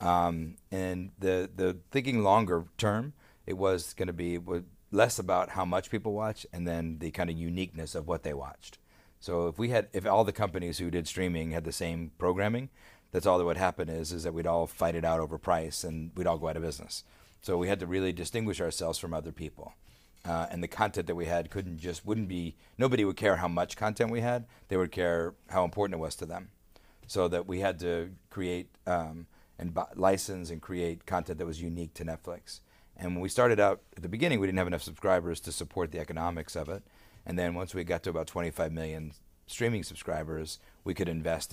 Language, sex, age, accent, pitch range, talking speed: English, male, 40-59, American, 80-95 Hz, 220 wpm